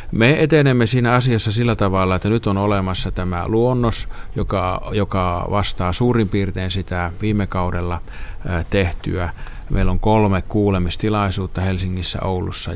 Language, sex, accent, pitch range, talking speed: Finnish, male, native, 90-105 Hz, 125 wpm